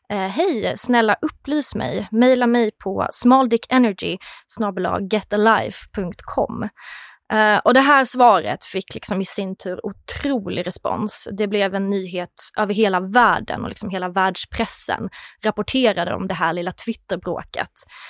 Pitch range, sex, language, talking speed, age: 195-240 Hz, female, English, 125 wpm, 20-39